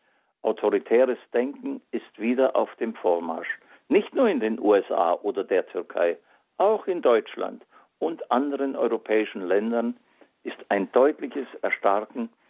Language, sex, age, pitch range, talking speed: German, male, 50-69, 110-145 Hz, 125 wpm